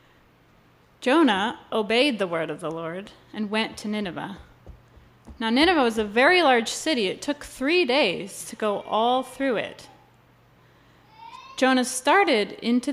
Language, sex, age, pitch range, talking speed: English, female, 30-49, 195-275 Hz, 140 wpm